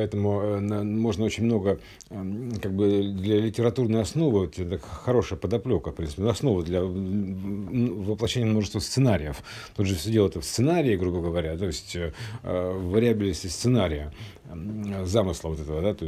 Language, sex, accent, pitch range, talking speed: Russian, male, native, 90-110 Hz, 155 wpm